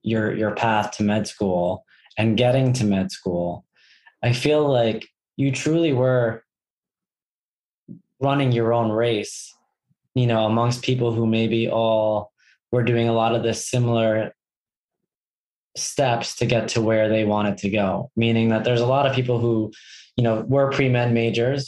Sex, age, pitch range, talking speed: male, 20-39, 110-125 Hz, 160 wpm